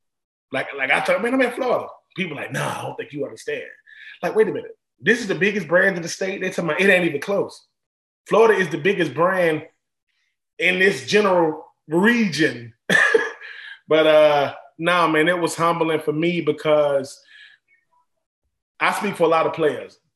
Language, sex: English, male